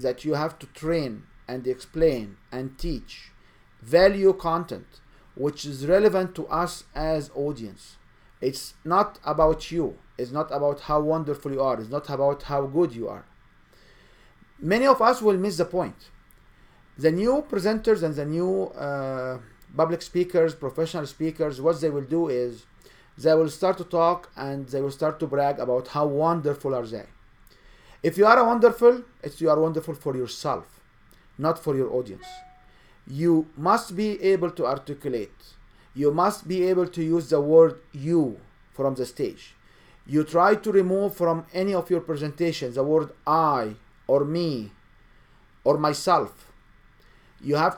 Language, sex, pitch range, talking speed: English, male, 135-175 Hz, 155 wpm